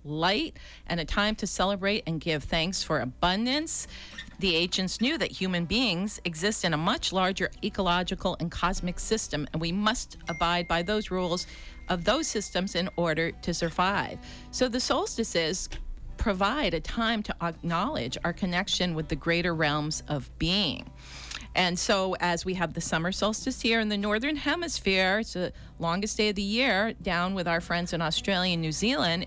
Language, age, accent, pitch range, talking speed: English, 40-59, American, 165-215 Hz, 175 wpm